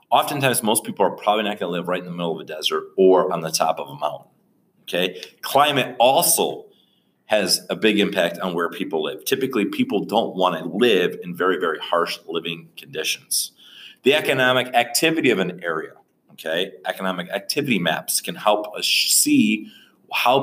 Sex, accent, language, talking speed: male, American, English, 180 wpm